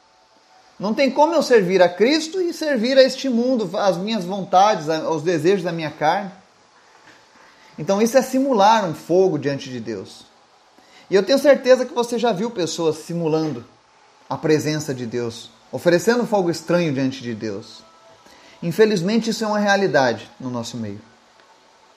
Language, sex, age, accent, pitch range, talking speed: Portuguese, male, 30-49, Brazilian, 165-235 Hz, 155 wpm